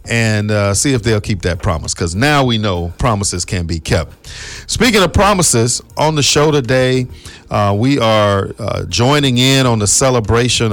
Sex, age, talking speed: male, 40-59, 180 wpm